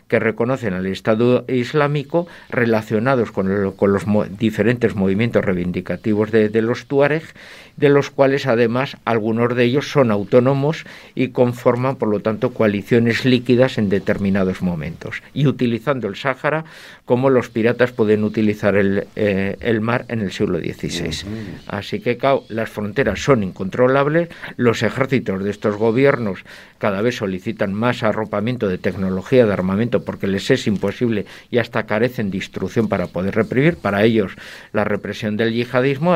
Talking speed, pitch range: 155 wpm, 100-120 Hz